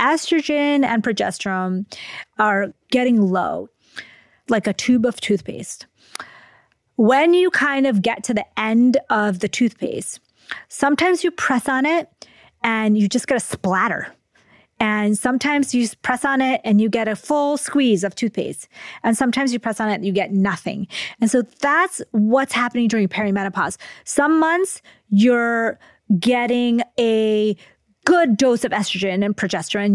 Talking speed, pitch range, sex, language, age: 150 wpm, 195-250 Hz, female, English, 30-49